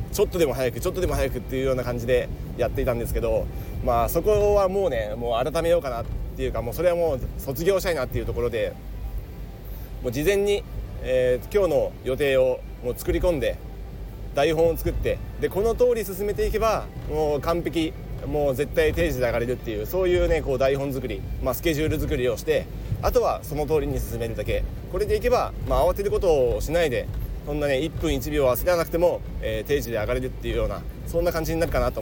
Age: 40-59